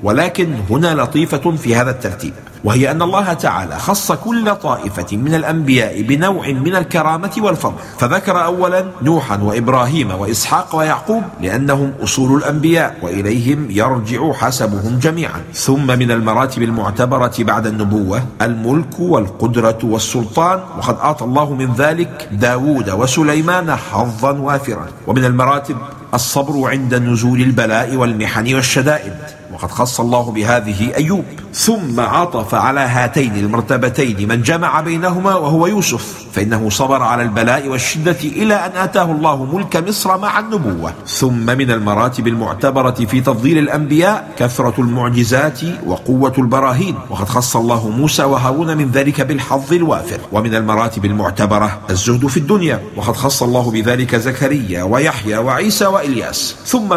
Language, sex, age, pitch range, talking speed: English, male, 50-69, 115-155 Hz, 125 wpm